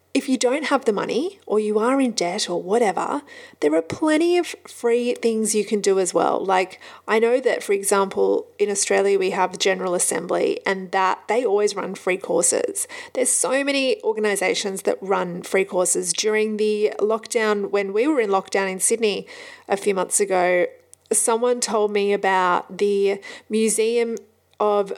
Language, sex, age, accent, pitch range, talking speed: English, female, 30-49, Australian, 200-310 Hz, 175 wpm